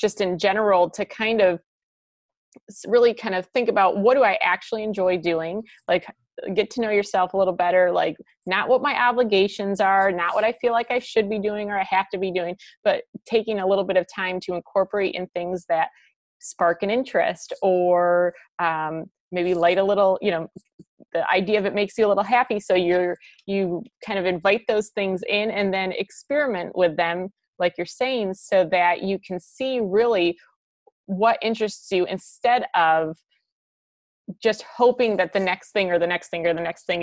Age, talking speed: 30-49, 195 wpm